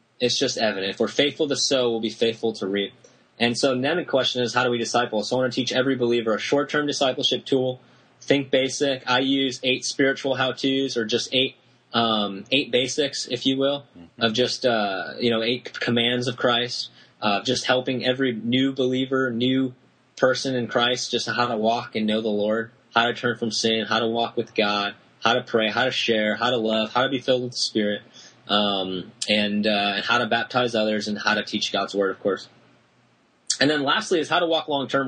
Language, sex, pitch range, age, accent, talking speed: English, male, 115-135 Hz, 20-39, American, 215 wpm